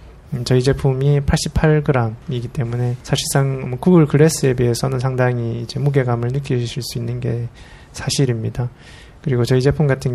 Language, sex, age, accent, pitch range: Korean, male, 20-39, native, 120-145 Hz